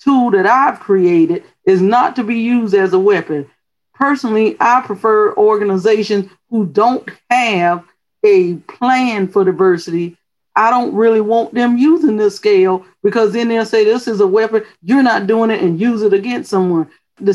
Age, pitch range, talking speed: 40-59, 190-245 Hz, 170 wpm